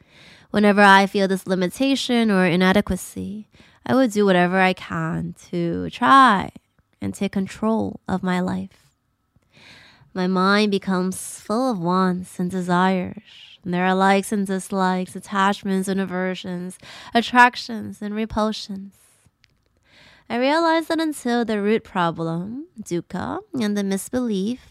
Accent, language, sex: American, English, female